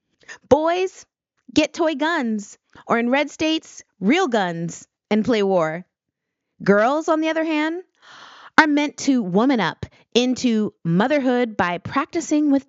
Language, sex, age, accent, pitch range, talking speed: English, female, 30-49, American, 200-280 Hz, 130 wpm